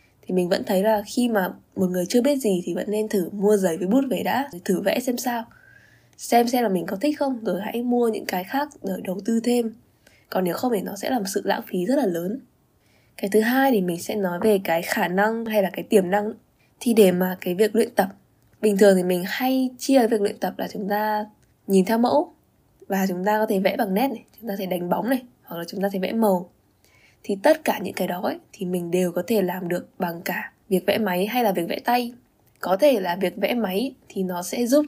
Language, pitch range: Vietnamese, 185-235 Hz